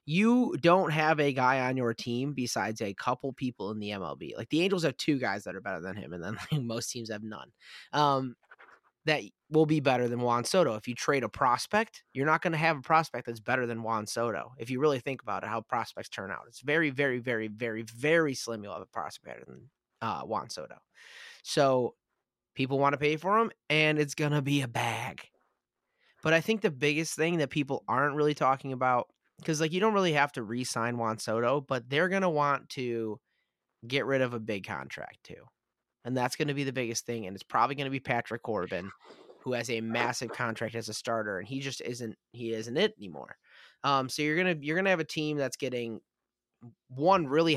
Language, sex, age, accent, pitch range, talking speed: English, male, 20-39, American, 115-150 Hz, 225 wpm